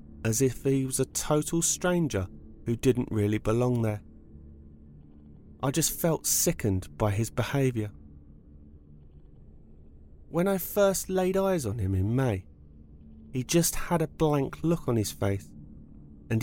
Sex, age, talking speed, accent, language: male, 30-49, 140 wpm, British, English